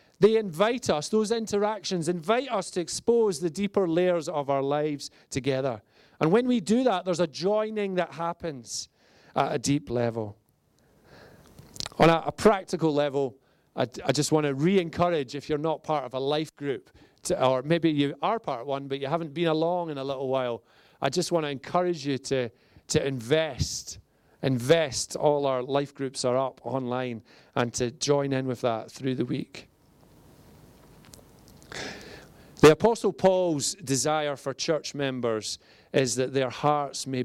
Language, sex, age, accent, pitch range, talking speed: English, male, 40-59, British, 125-160 Hz, 165 wpm